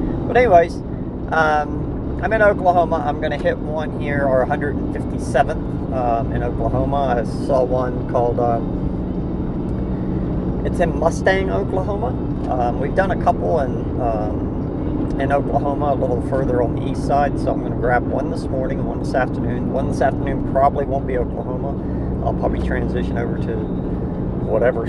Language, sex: English, male